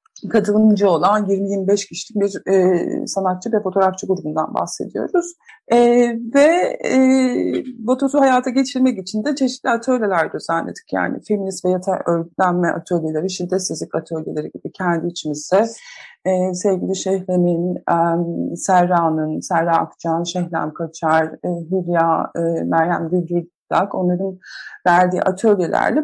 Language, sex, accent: Turkish, female, native